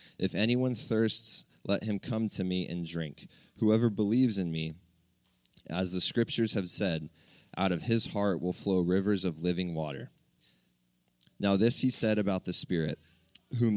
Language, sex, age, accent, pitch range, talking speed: English, male, 20-39, American, 90-110 Hz, 160 wpm